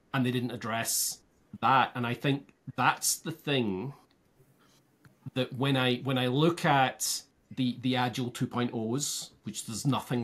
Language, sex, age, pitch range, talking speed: English, male, 30-49, 110-135 Hz, 145 wpm